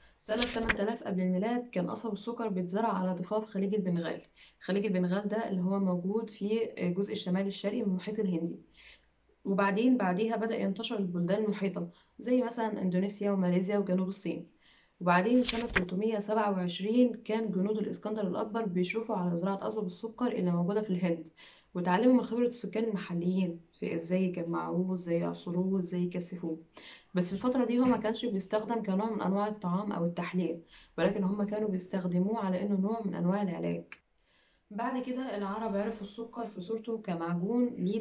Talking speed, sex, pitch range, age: 155 wpm, female, 185-225 Hz, 10-29